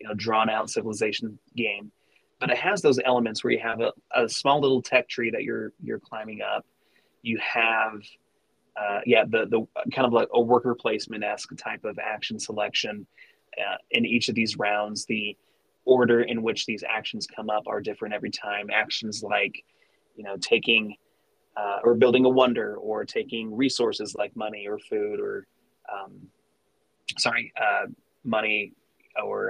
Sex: male